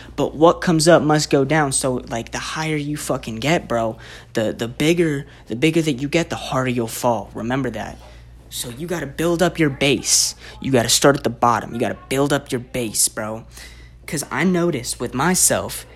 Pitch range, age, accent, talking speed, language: 115-165 Hz, 20-39, American, 205 wpm, English